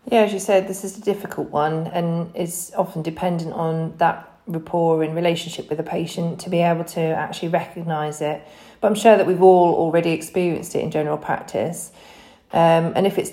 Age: 40-59